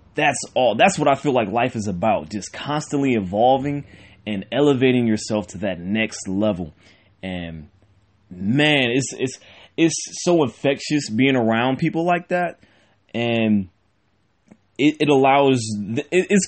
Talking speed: 140 wpm